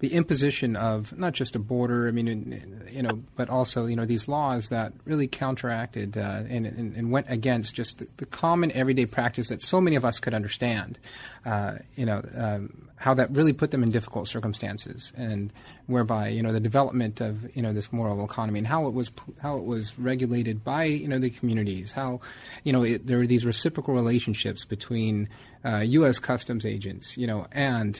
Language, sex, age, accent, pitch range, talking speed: English, male, 30-49, American, 115-130 Hz, 195 wpm